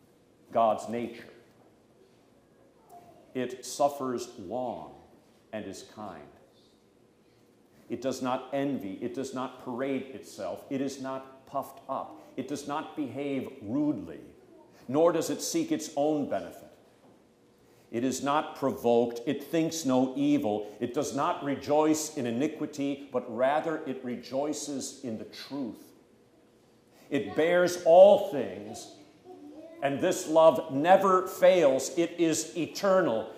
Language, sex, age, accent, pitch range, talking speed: English, male, 50-69, American, 120-155 Hz, 120 wpm